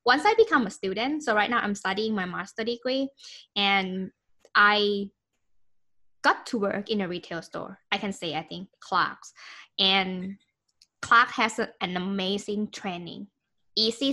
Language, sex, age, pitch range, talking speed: English, female, 10-29, 195-260 Hz, 155 wpm